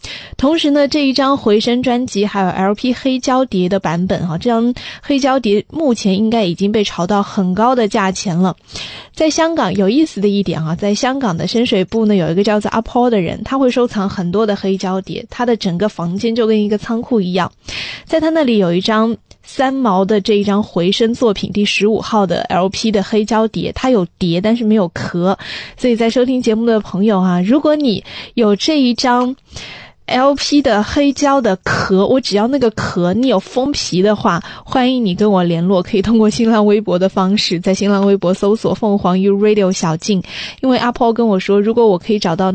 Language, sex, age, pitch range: Chinese, female, 20-39, 190-240 Hz